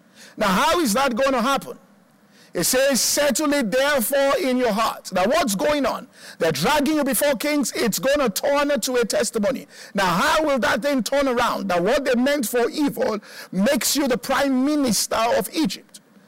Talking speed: 190 wpm